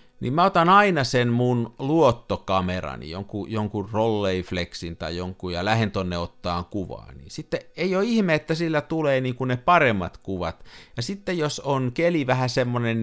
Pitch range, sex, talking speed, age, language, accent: 95-130 Hz, male, 170 wpm, 50-69, Finnish, native